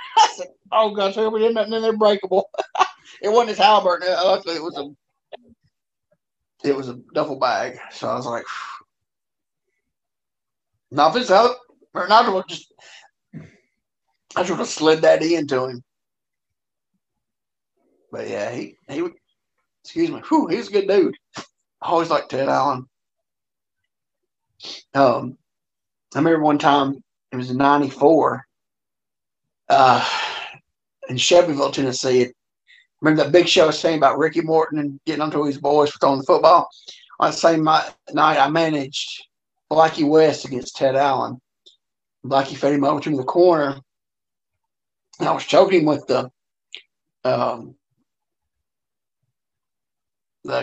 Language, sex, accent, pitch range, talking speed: English, male, American, 140-225 Hz, 140 wpm